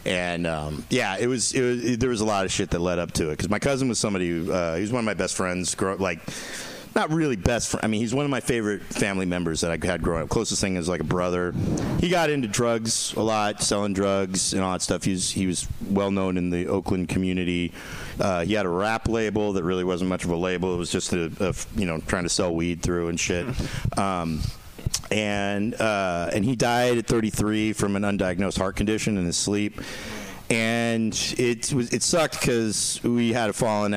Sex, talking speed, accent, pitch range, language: male, 235 wpm, American, 90-110 Hz, English